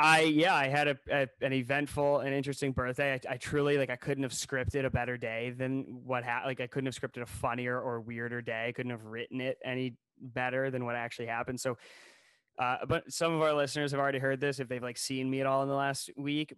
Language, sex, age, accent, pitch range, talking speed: English, male, 20-39, American, 125-145 Hz, 245 wpm